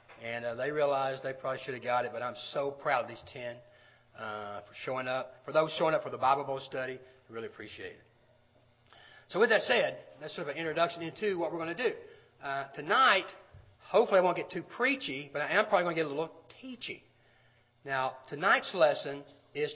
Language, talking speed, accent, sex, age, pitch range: English, 215 wpm, American, male, 40-59, 135-195 Hz